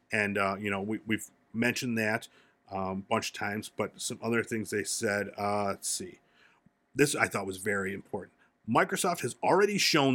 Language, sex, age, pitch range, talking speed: English, male, 40-59, 110-130 Hz, 185 wpm